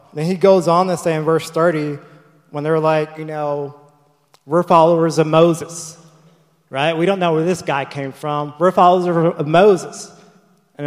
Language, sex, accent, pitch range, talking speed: English, male, American, 150-175 Hz, 175 wpm